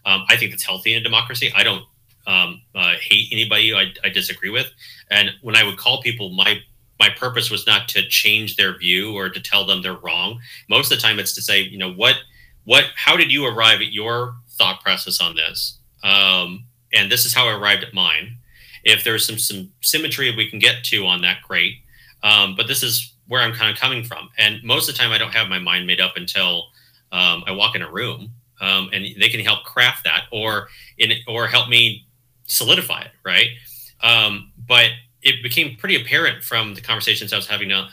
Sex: male